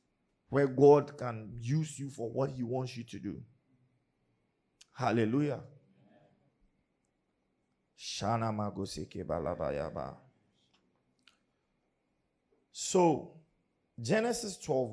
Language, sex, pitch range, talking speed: English, male, 100-135 Hz, 60 wpm